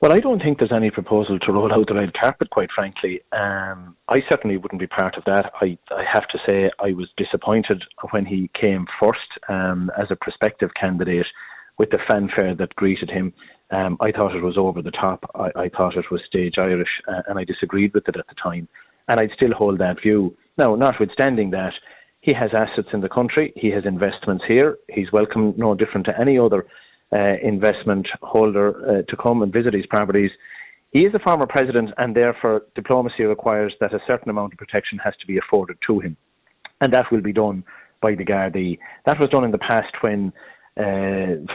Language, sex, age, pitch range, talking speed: English, male, 30-49, 95-110 Hz, 205 wpm